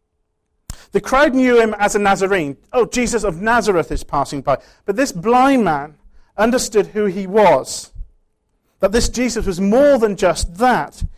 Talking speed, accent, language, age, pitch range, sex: 160 wpm, British, English, 40-59, 180-255 Hz, male